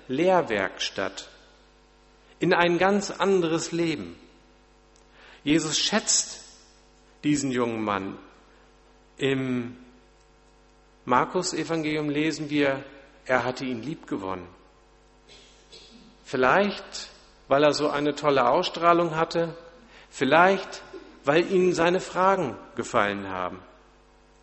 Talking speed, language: 85 wpm, German